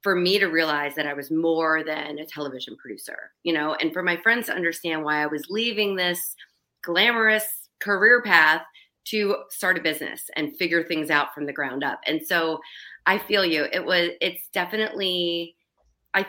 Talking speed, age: 185 wpm, 30-49